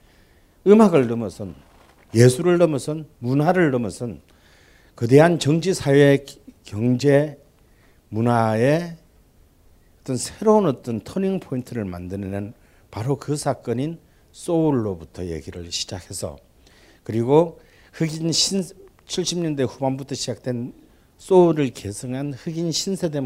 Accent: native